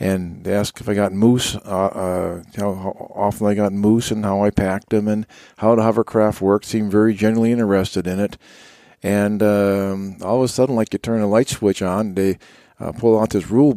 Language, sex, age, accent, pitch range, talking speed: English, male, 50-69, American, 95-110 Hz, 220 wpm